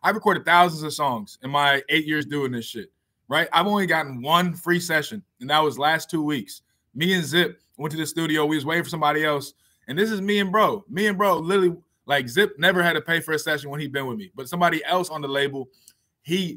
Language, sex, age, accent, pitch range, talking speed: English, male, 20-39, American, 140-170 Hz, 250 wpm